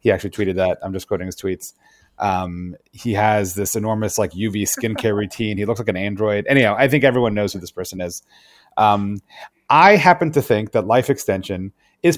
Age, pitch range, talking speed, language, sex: 30-49, 95-115 Hz, 200 wpm, English, male